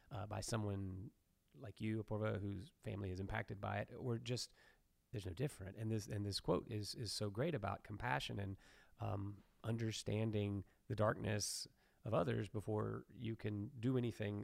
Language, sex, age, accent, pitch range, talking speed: English, male, 30-49, American, 100-115 Hz, 165 wpm